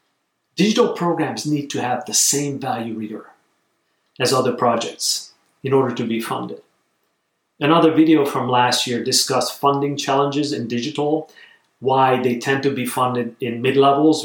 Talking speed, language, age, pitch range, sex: 145 wpm, English, 40-59, 120-155 Hz, male